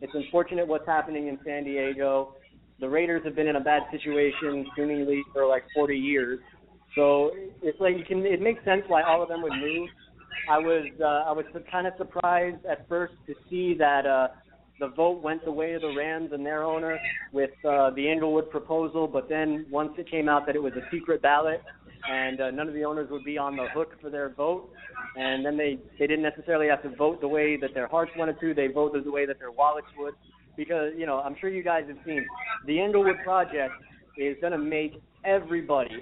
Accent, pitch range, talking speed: American, 140-165 Hz, 220 wpm